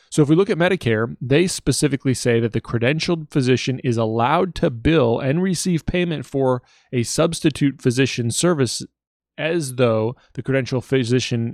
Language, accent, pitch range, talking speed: English, American, 115-140 Hz, 155 wpm